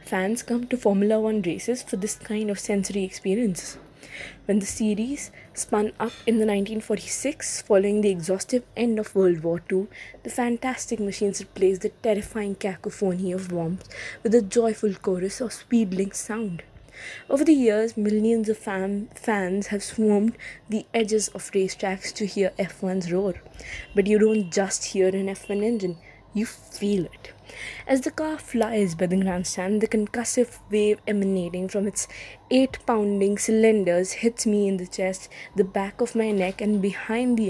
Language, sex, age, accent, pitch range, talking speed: English, female, 20-39, Indian, 195-225 Hz, 160 wpm